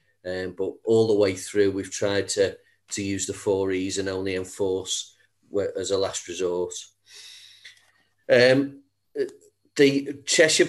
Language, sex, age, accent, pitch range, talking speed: English, male, 40-59, British, 105-125 Hz, 135 wpm